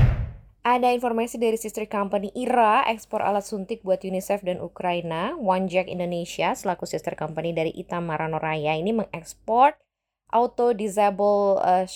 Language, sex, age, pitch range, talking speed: Indonesian, female, 20-39, 175-225 Hz, 130 wpm